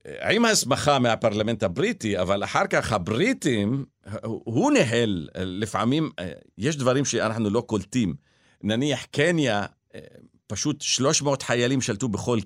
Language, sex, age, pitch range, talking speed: Hebrew, male, 50-69, 105-140 Hz, 110 wpm